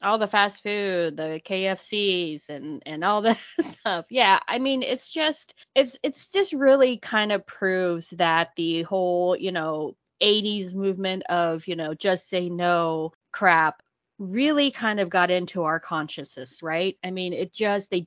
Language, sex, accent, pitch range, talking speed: English, female, American, 165-235 Hz, 165 wpm